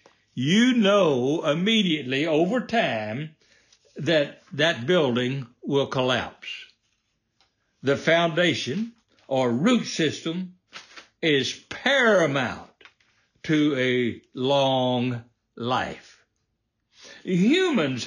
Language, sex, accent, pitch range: English, male, American, 125-195 Hz